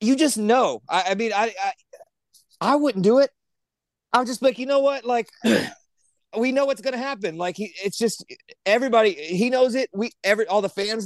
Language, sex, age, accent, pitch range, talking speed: English, male, 30-49, American, 155-225 Hz, 200 wpm